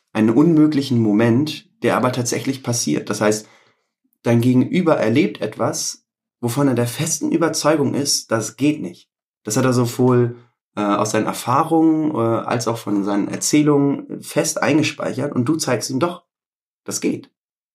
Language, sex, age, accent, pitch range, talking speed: German, male, 30-49, German, 105-140 Hz, 145 wpm